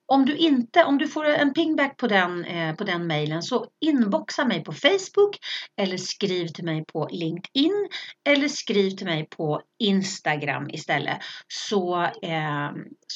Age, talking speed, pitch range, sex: 40-59, 150 wpm, 170-225 Hz, female